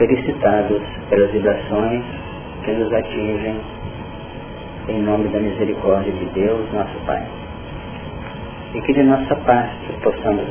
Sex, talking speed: male, 115 wpm